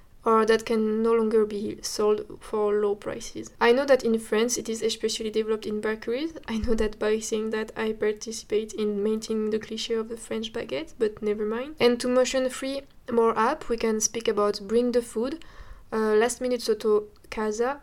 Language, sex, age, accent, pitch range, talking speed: Italian, female, 20-39, French, 220-235 Hz, 190 wpm